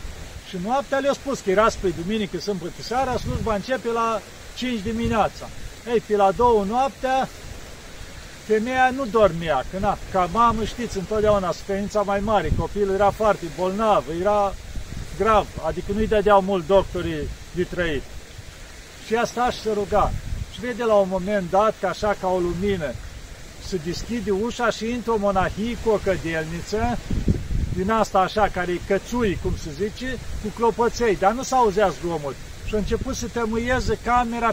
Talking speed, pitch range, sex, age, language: 160 wpm, 190-230 Hz, male, 50-69, Romanian